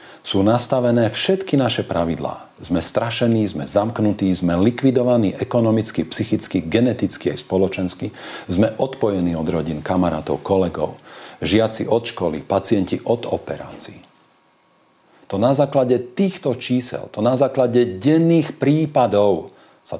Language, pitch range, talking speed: Slovak, 90-125 Hz, 115 wpm